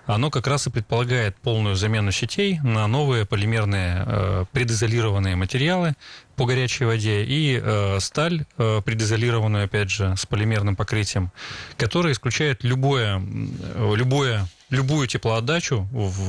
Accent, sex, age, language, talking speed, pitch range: native, male, 30-49, Russian, 115 wpm, 100-130 Hz